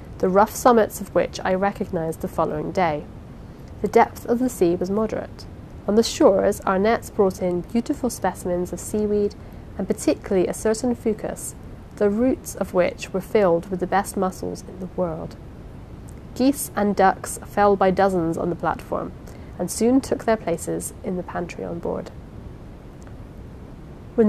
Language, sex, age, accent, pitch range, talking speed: English, female, 30-49, British, 180-225 Hz, 165 wpm